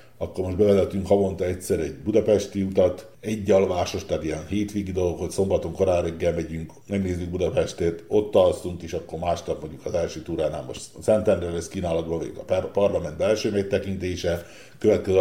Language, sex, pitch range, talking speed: Hungarian, male, 85-100 Hz, 150 wpm